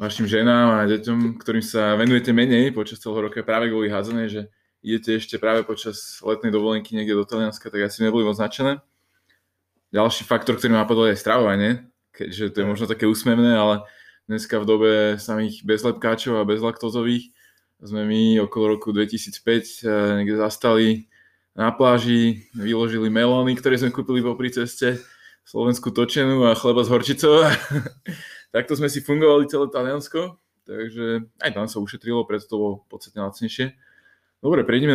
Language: Slovak